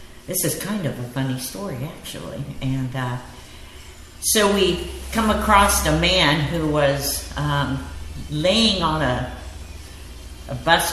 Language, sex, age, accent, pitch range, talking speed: English, female, 50-69, American, 110-150 Hz, 130 wpm